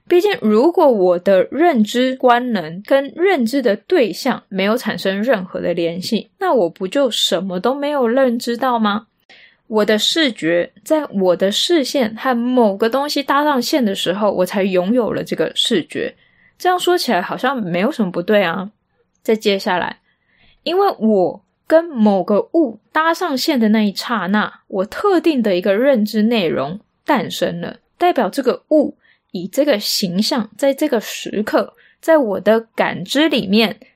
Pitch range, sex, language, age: 195-280 Hz, female, Chinese, 20-39